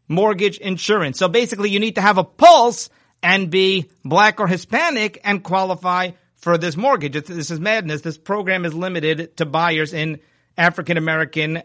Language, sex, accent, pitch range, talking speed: English, male, American, 150-185 Hz, 160 wpm